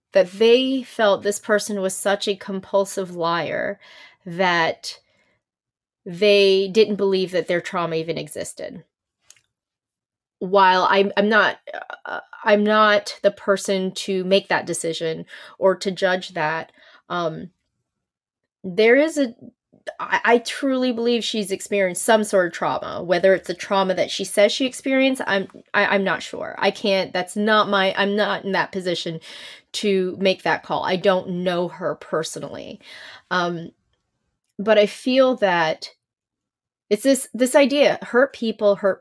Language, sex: English, female